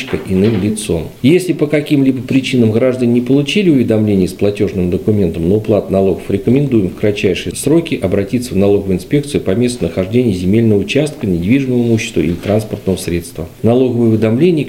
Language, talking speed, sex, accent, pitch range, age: Russian, 145 wpm, male, native, 95-115 Hz, 40-59